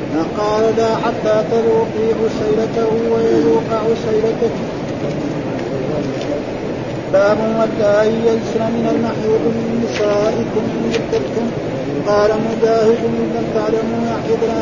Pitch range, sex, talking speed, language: 220-230 Hz, male, 95 wpm, Arabic